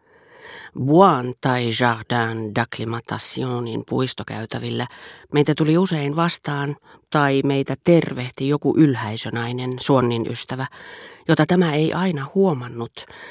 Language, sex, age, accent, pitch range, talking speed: Finnish, female, 40-59, native, 125-155 Hz, 95 wpm